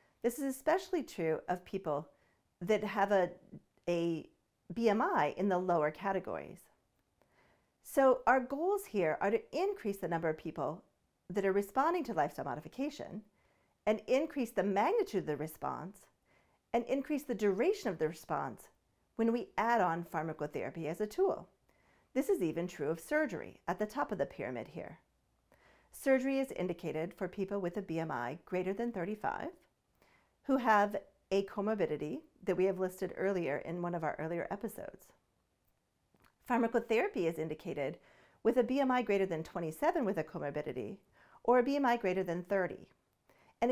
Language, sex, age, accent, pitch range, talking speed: English, female, 40-59, American, 175-245 Hz, 155 wpm